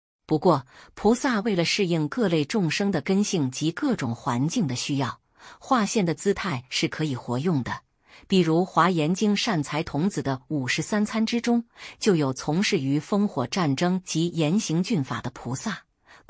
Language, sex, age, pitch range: Chinese, female, 50-69, 145-200 Hz